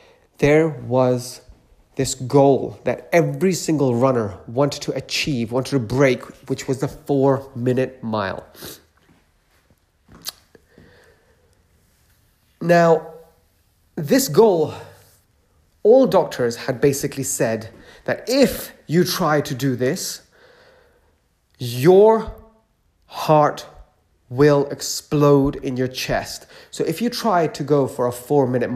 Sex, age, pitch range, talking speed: male, 30-49, 115-160 Hz, 110 wpm